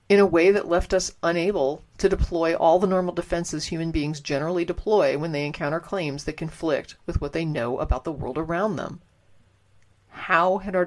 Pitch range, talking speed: 145-185 Hz, 195 wpm